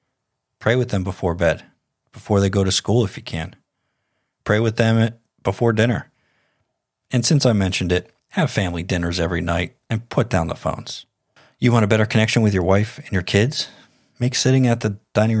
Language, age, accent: English, 40-59, American